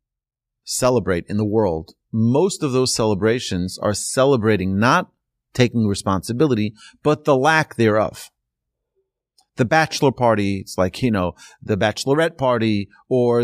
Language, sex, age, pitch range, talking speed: English, male, 30-49, 105-145 Hz, 125 wpm